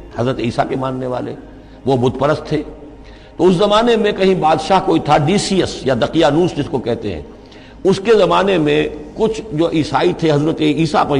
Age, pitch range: 50-69, 130-165 Hz